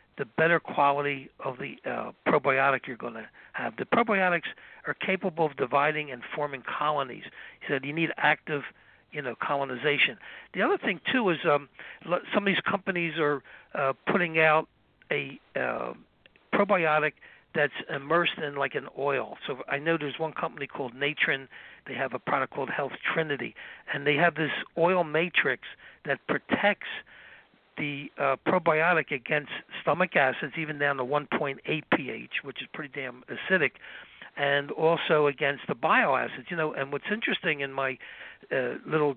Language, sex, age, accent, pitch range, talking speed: English, male, 60-79, American, 140-170 Hz, 160 wpm